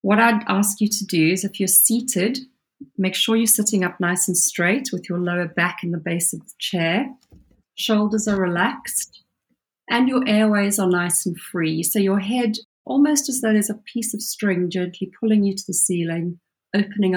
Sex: female